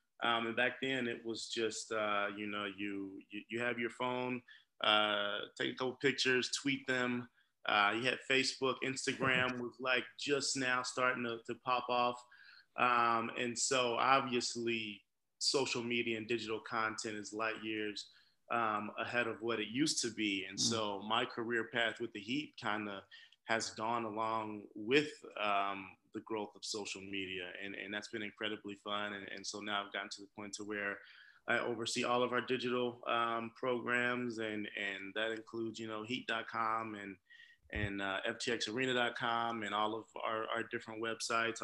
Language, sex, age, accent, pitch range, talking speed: English, male, 20-39, American, 110-125 Hz, 175 wpm